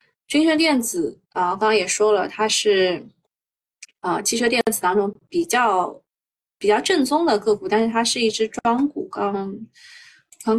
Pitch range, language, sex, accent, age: 205-280 Hz, Chinese, female, native, 20-39